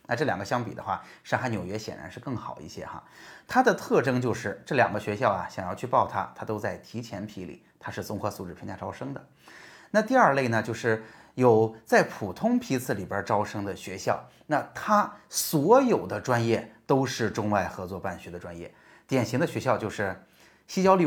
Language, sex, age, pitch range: Chinese, male, 30-49, 105-135 Hz